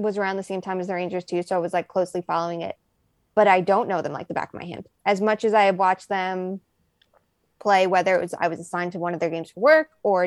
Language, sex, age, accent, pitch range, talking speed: English, female, 20-39, American, 180-220 Hz, 285 wpm